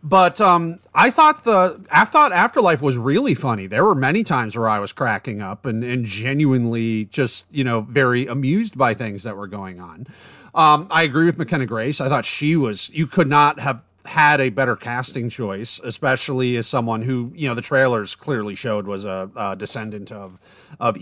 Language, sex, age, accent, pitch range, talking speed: English, male, 30-49, American, 115-155 Hz, 195 wpm